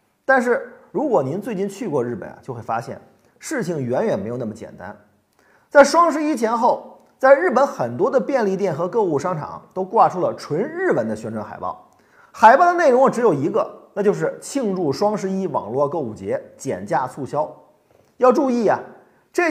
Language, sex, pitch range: Chinese, male, 175-290 Hz